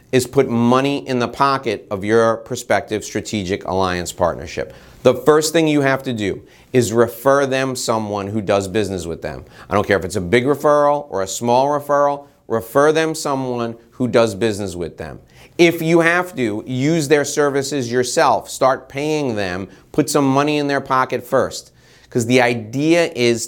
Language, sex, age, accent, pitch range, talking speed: English, male, 30-49, American, 110-145 Hz, 180 wpm